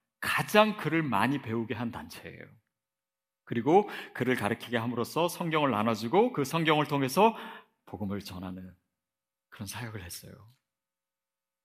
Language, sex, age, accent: Korean, male, 40-59, native